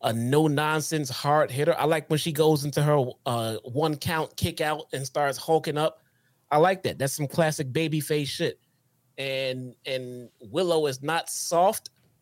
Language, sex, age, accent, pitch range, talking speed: English, male, 30-49, American, 125-160 Hz, 170 wpm